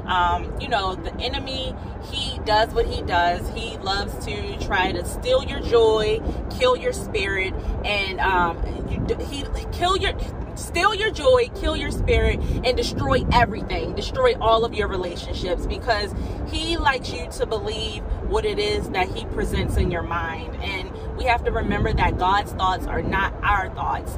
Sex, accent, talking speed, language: female, American, 165 wpm, English